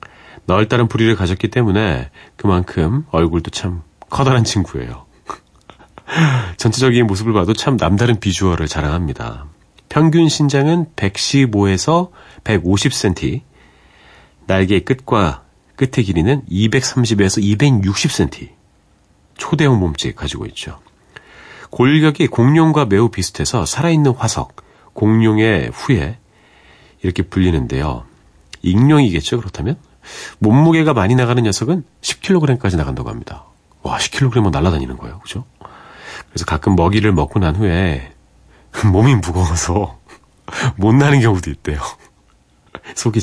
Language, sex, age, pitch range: Korean, male, 40-59, 85-125 Hz